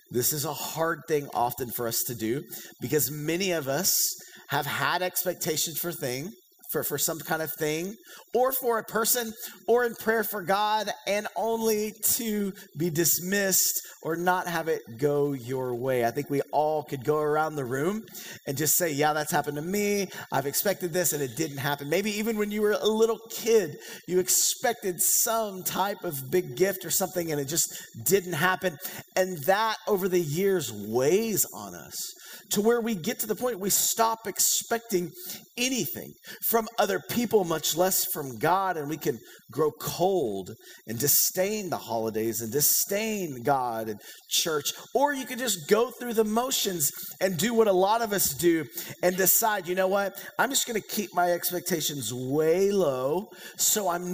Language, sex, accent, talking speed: English, male, American, 180 wpm